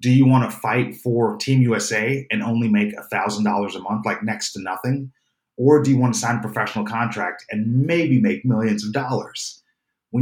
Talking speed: 200 wpm